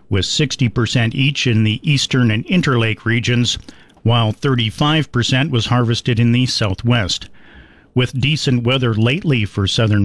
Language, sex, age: English, male, 50-69